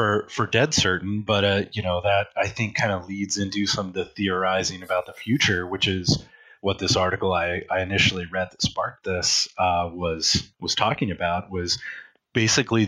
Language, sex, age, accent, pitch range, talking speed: English, male, 30-49, American, 95-120 Hz, 190 wpm